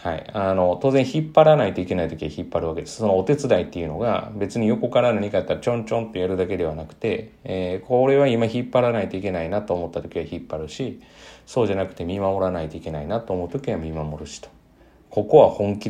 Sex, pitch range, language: male, 90-125 Hz, Japanese